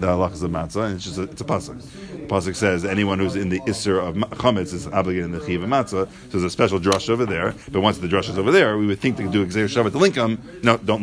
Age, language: 40-59, English